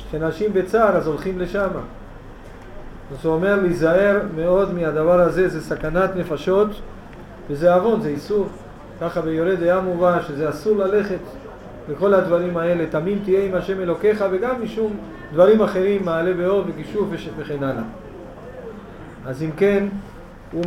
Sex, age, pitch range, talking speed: male, 40-59, 165-200 Hz, 135 wpm